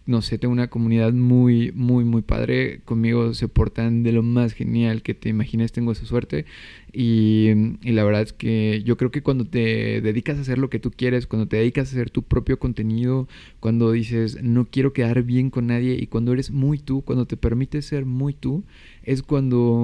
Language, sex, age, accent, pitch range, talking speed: Spanish, male, 20-39, Mexican, 110-130 Hz, 210 wpm